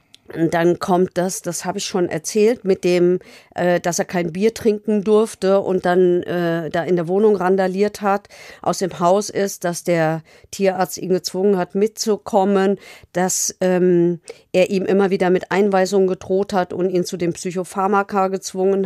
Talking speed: 170 wpm